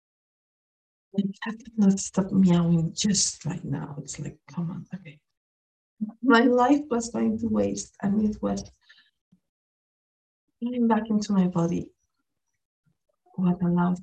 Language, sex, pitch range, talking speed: English, female, 175-225 Hz, 130 wpm